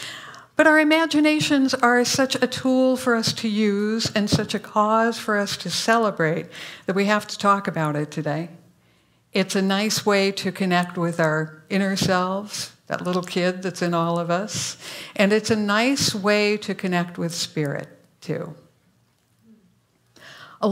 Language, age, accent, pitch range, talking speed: English, 60-79, American, 170-225 Hz, 160 wpm